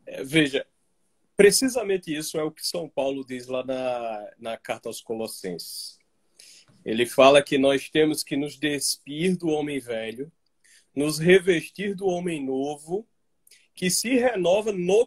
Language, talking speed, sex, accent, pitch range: Portuguese, 140 wpm, male, Brazilian, 135-185 Hz